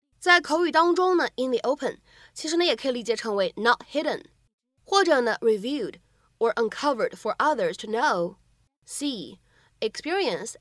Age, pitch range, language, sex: 20-39, 230-320 Hz, Chinese, female